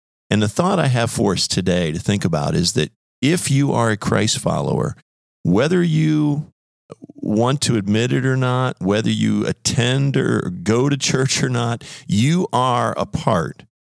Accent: American